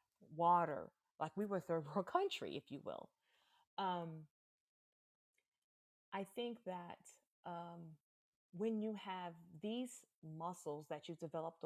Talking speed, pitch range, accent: 120 wpm, 160-200 Hz, American